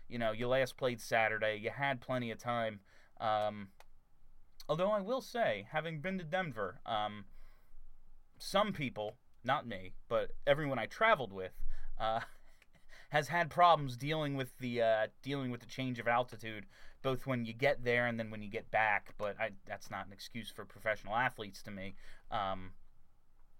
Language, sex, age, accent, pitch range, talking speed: English, male, 30-49, American, 110-145 Hz, 170 wpm